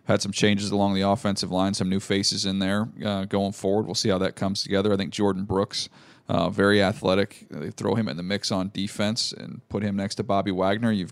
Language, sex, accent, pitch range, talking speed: English, male, American, 100-120 Hz, 235 wpm